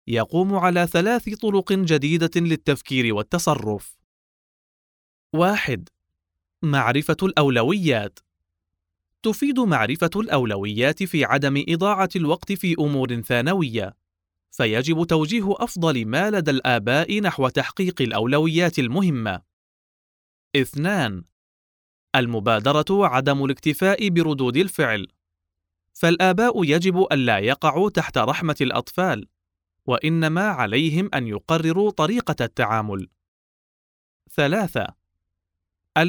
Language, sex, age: Arabic, male, 30-49